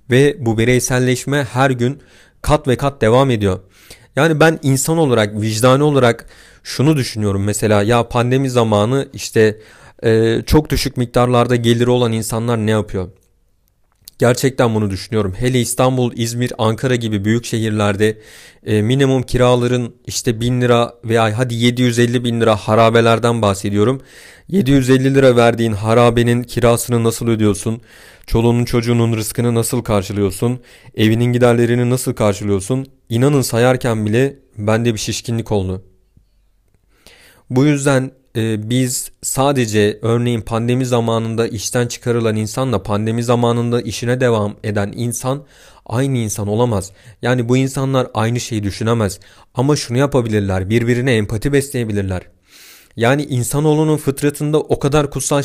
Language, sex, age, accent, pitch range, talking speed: Turkish, male, 40-59, native, 110-130 Hz, 125 wpm